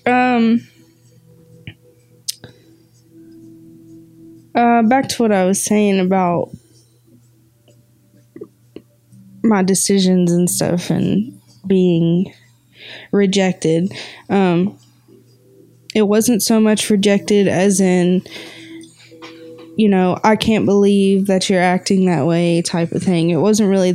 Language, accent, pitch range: English, American, 165-195 Hz